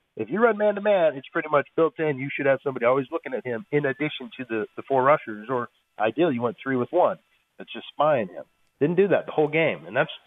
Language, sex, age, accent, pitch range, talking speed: English, male, 30-49, American, 120-165 Hz, 250 wpm